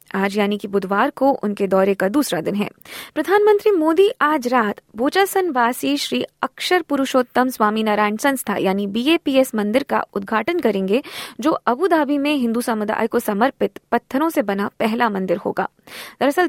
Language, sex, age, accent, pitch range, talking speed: Hindi, female, 20-39, native, 215-300 Hz, 155 wpm